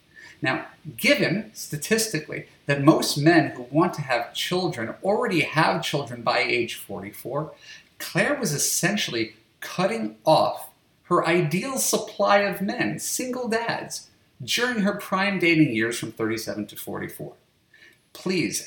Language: English